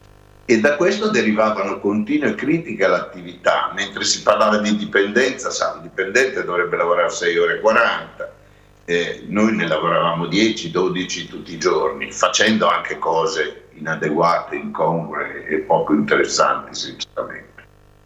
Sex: male